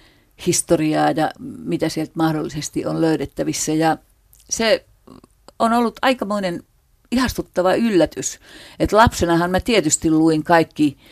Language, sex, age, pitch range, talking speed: Finnish, female, 50-69, 155-210 Hz, 110 wpm